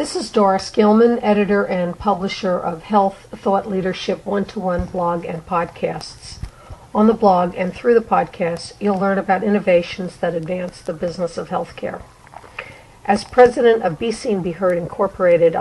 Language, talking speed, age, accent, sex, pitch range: English, 155 wpm, 60-79, American, female, 175-210 Hz